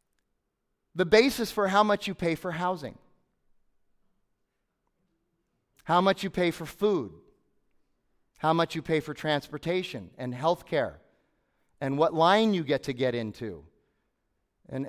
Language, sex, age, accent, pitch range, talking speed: English, male, 30-49, American, 130-175 Hz, 135 wpm